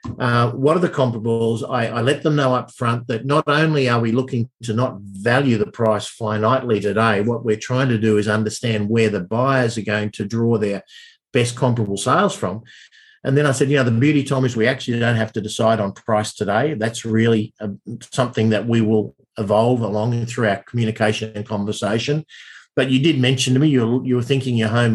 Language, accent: English, Australian